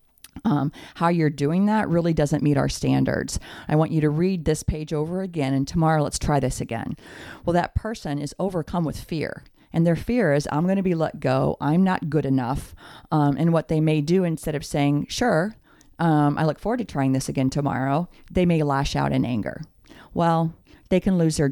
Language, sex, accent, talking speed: English, female, American, 210 wpm